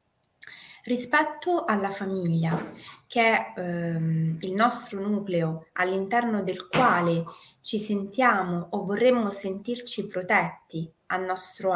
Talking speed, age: 100 wpm, 20-39